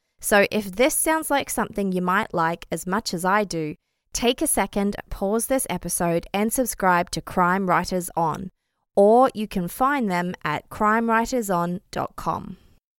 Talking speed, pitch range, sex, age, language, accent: 150 wpm, 185-235 Hz, female, 20-39, English, Australian